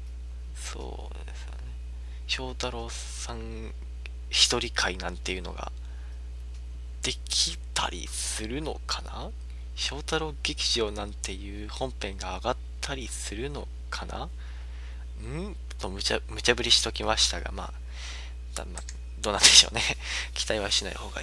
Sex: male